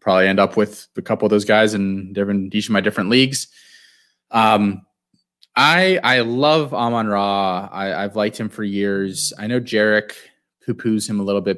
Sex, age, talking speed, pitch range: male, 20-39, 185 wpm, 95-120 Hz